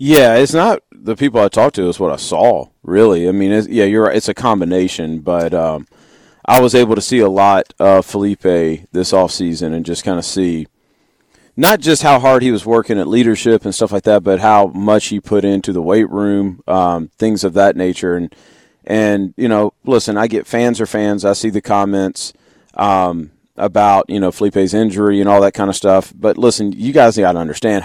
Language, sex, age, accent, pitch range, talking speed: English, male, 40-59, American, 95-110 Hz, 215 wpm